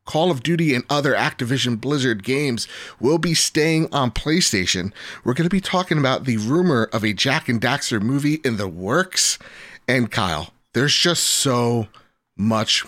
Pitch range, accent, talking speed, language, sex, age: 110-140 Hz, American, 170 wpm, English, male, 30-49